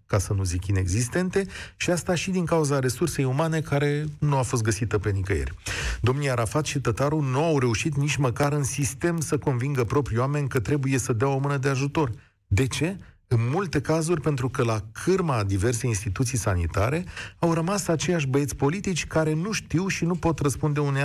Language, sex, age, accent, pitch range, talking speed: Romanian, male, 40-59, native, 115-160 Hz, 195 wpm